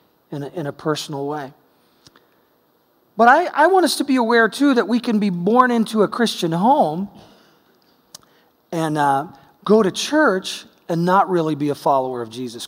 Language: English